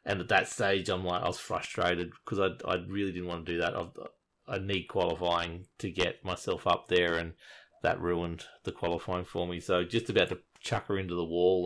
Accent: Australian